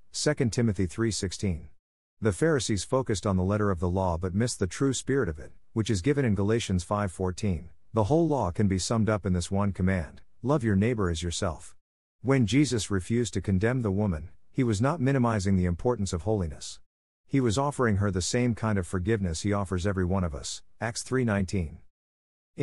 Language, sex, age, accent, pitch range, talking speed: English, male, 50-69, American, 90-115 Hz, 195 wpm